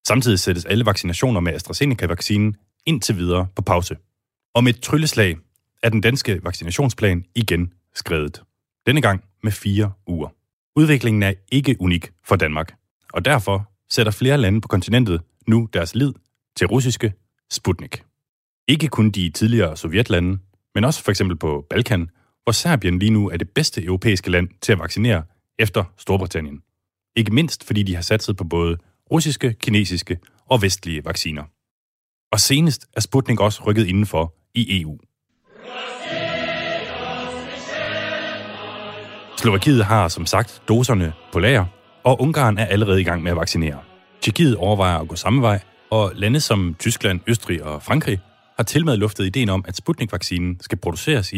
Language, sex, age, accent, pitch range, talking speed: Danish, male, 30-49, native, 90-125 Hz, 150 wpm